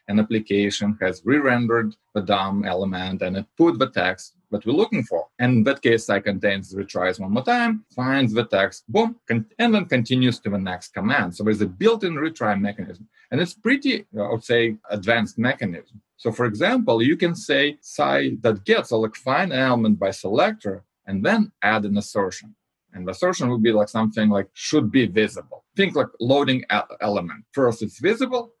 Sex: male